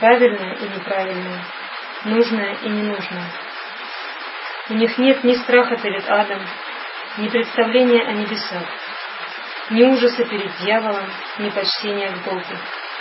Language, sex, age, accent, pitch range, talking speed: Russian, female, 20-39, native, 205-235 Hz, 115 wpm